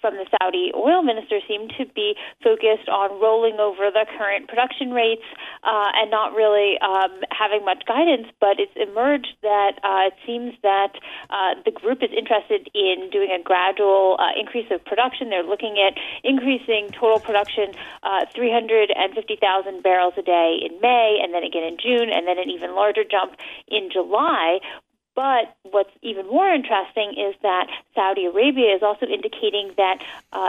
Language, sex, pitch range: English, female, 195-250 Hz